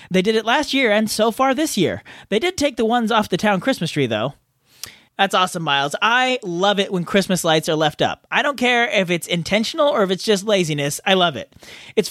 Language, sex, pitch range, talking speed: English, male, 160-235 Hz, 240 wpm